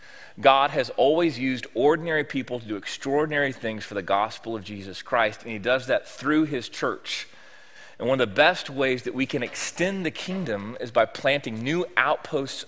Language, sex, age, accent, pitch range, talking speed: English, male, 30-49, American, 110-140 Hz, 190 wpm